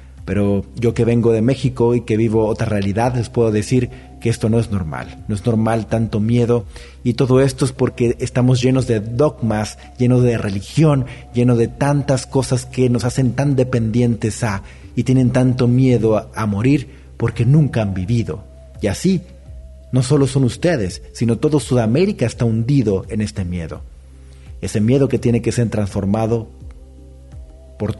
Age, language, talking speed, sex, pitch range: 40-59, Spanish, 170 wpm, male, 100-125 Hz